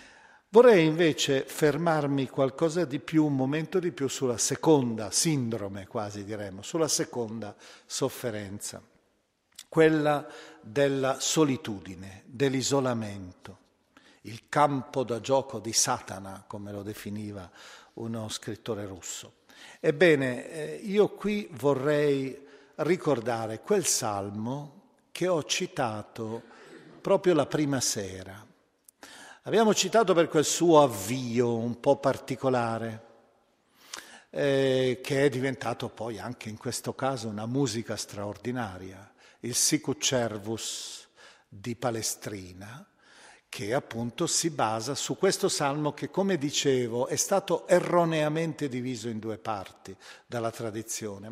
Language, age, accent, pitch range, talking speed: Italian, 50-69, native, 110-150 Hz, 110 wpm